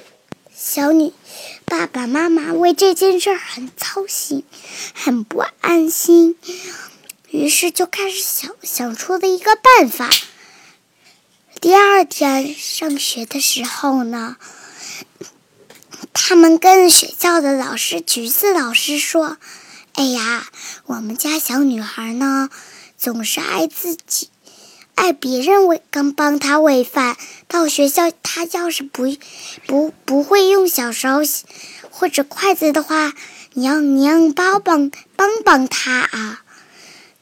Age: 10-29